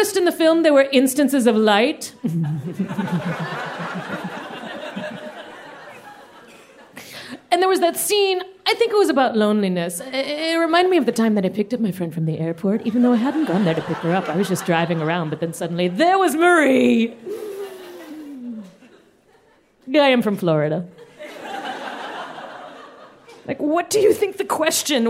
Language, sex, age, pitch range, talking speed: English, female, 30-49, 210-335 Hz, 160 wpm